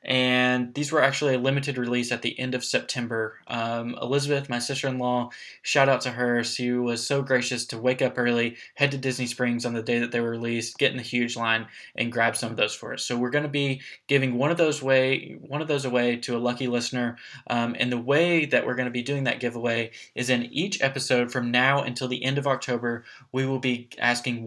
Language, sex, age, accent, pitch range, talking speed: English, male, 20-39, American, 120-135 Hz, 230 wpm